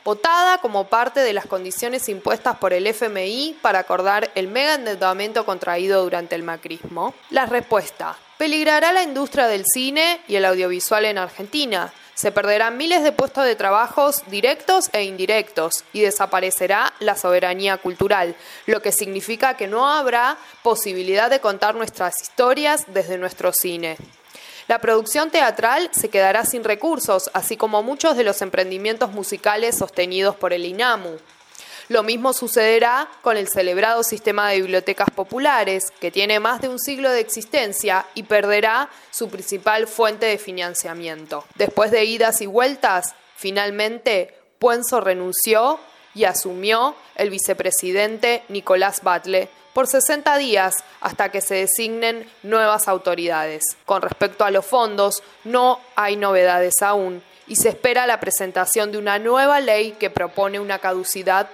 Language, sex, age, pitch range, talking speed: Spanish, female, 20-39, 190-240 Hz, 145 wpm